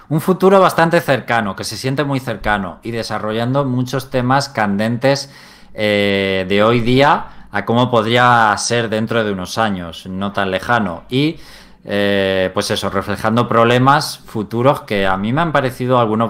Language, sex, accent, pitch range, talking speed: Spanish, male, Spanish, 105-140 Hz, 160 wpm